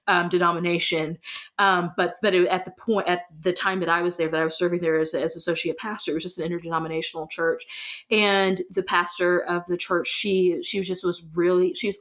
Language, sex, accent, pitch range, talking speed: English, female, American, 170-195 Hz, 215 wpm